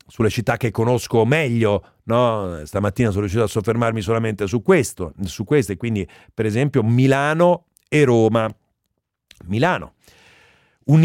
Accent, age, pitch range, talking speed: native, 40-59, 110-160 Hz, 130 wpm